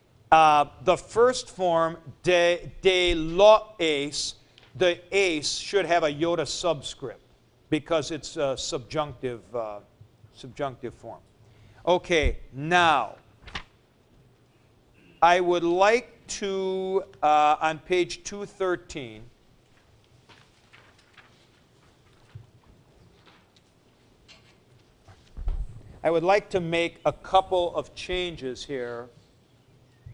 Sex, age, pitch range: male, 50-69, 125-175 Hz